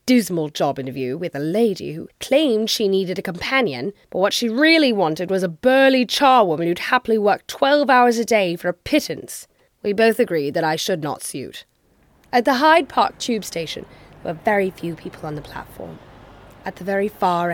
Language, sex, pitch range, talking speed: English, female, 180-275 Hz, 190 wpm